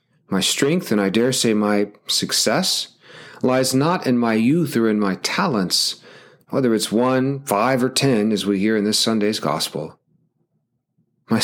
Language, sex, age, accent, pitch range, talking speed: English, male, 40-59, American, 105-150 Hz, 165 wpm